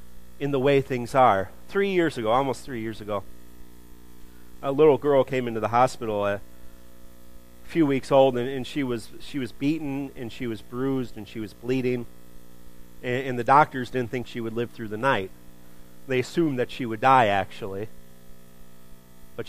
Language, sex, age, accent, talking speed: English, male, 40-59, American, 180 wpm